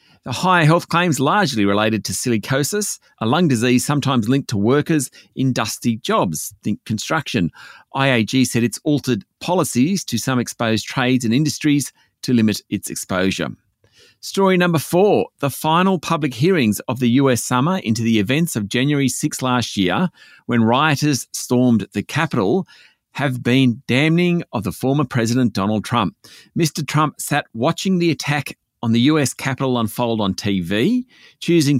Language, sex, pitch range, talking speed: English, male, 115-155 Hz, 155 wpm